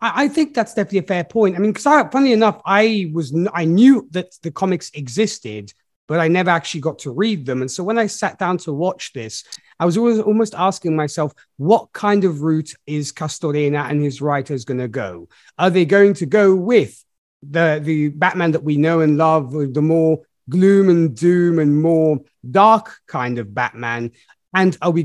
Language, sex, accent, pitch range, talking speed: English, male, British, 145-190 Hz, 200 wpm